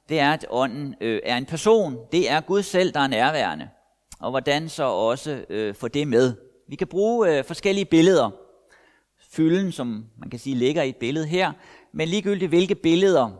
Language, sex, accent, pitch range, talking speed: Danish, male, native, 130-175 Hz, 190 wpm